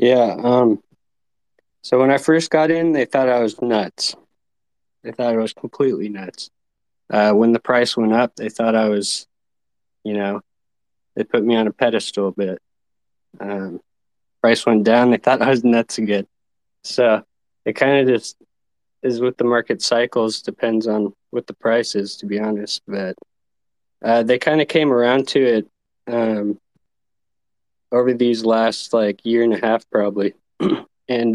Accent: American